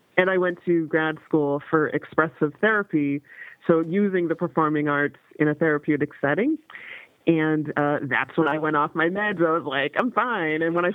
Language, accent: English, American